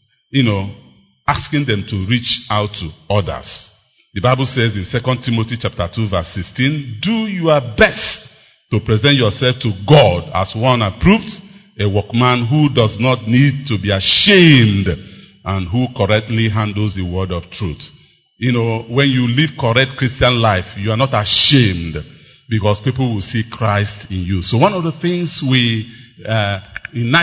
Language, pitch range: English, 100-140 Hz